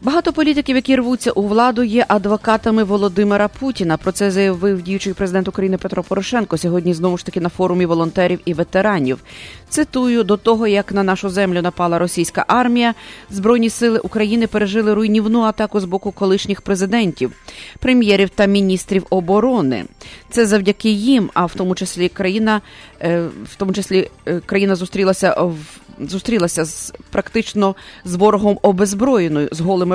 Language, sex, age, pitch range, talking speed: English, female, 30-49, 180-220 Hz, 145 wpm